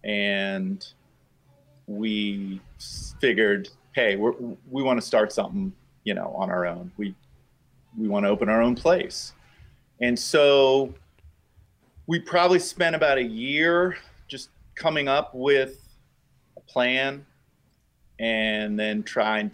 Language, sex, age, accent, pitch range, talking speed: English, male, 30-49, American, 100-135 Hz, 115 wpm